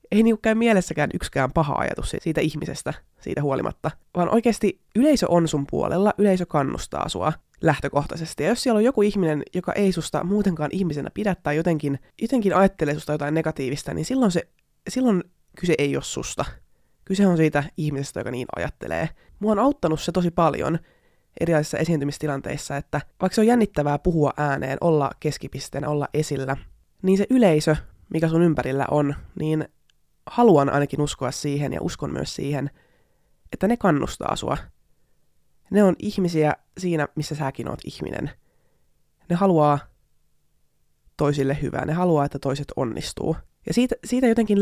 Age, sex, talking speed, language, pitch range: 20-39, female, 155 wpm, Finnish, 145-190 Hz